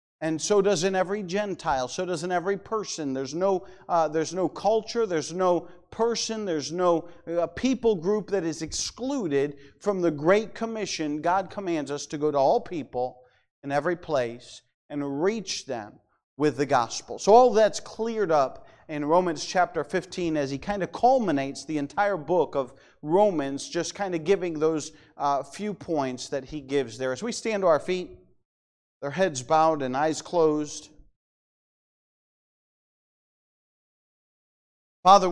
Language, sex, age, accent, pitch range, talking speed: English, male, 40-59, American, 140-195 Hz, 160 wpm